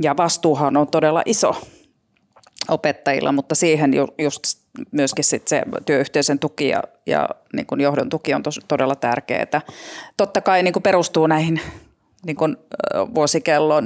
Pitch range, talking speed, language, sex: 145-165 Hz, 125 wpm, Finnish, female